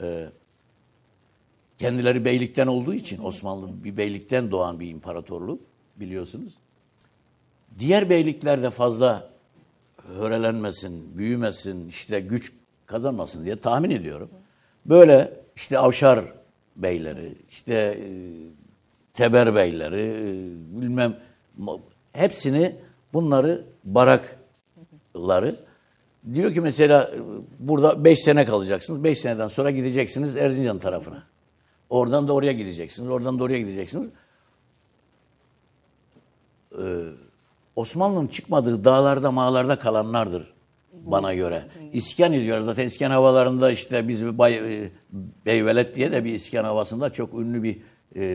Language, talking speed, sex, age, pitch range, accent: Turkish, 100 wpm, male, 60-79, 105-135 Hz, native